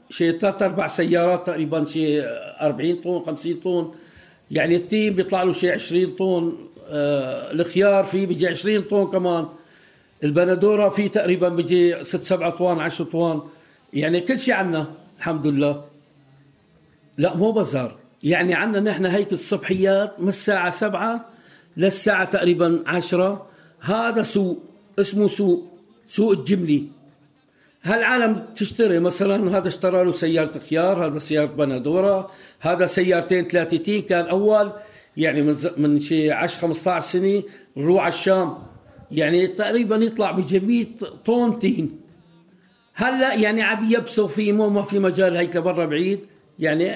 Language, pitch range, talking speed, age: Arabic, 165-200 Hz, 135 wpm, 60-79